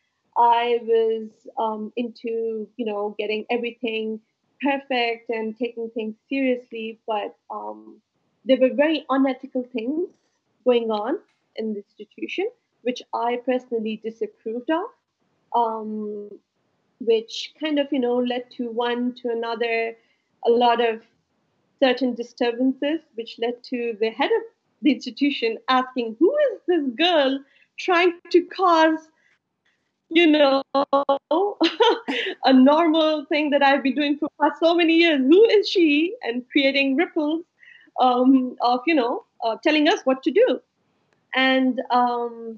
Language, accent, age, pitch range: English, Indian, 30-49, 230-295 Hz